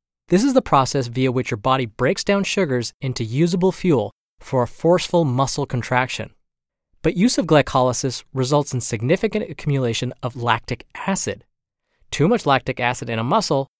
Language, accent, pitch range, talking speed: English, American, 115-150 Hz, 160 wpm